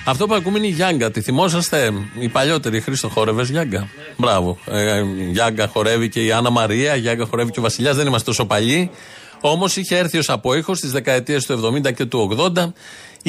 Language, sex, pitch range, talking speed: Greek, male, 120-175 Hz, 190 wpm